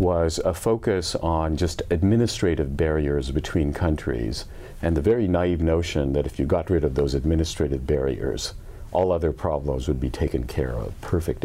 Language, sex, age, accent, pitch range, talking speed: English, male, 50-69, American, 75-90 Hz, 170 wpm